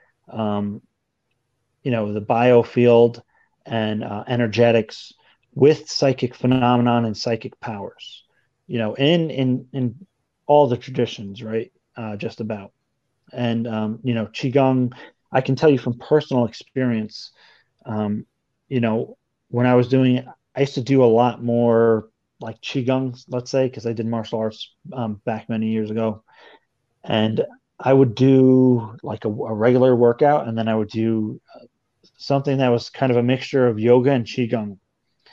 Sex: male